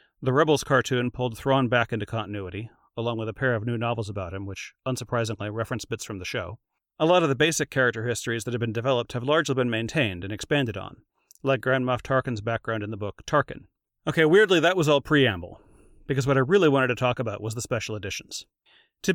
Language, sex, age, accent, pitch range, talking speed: English, male, 40-59, American, 115-140 Hz, 220 wpm